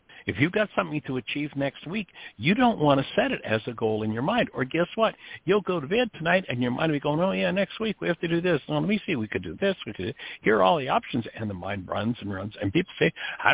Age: 60-79